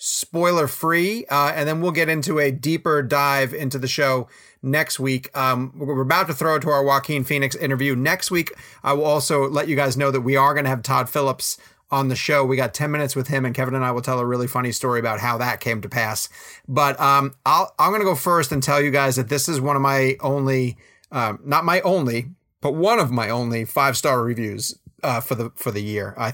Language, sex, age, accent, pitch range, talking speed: English, male, 30-49, American, 130-155 Hz, 240 wpm